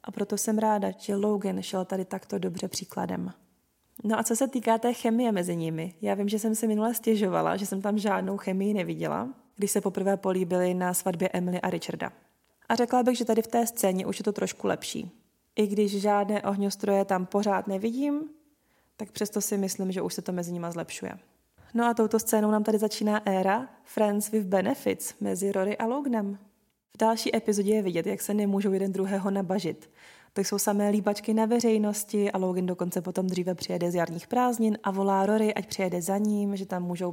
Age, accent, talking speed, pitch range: 20-39, native, 200 wpm, 190-225 Hz